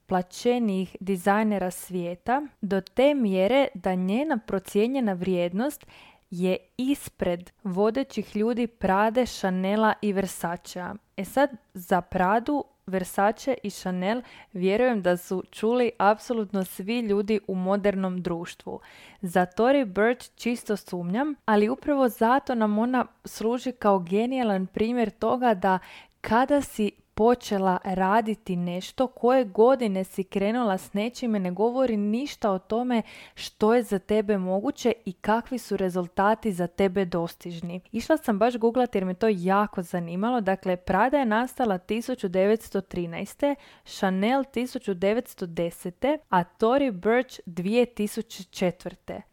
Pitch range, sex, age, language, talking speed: 190-235 Hz, female, 20-39, Croatian, 120 wpm